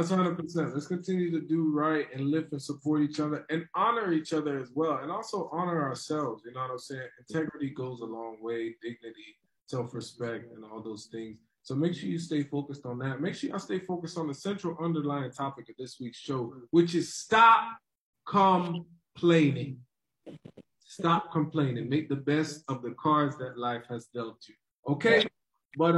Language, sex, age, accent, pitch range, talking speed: English, male, 20-39, American, 125-170 Hz, 180 wpm